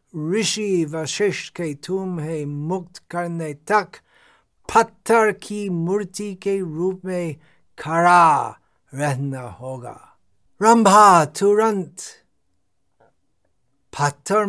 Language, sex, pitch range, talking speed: Hindi, male, 135-190 Hz, 80 wpm